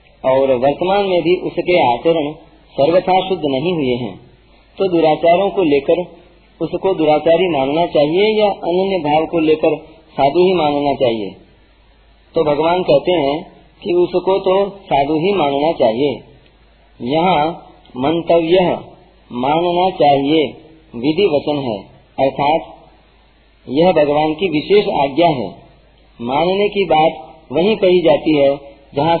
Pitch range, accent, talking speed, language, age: 145-180 Hz, native, 125 wpm, Hindi, 40-59